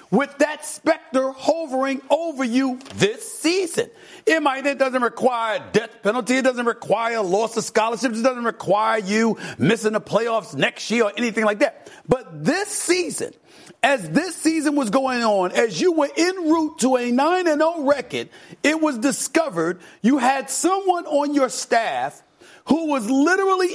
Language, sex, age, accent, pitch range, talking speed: English, male, 40-59, American, 235-315 Hz, 170 wpm